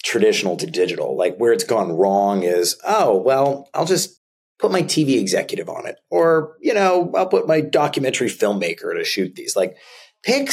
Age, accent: 30-49, American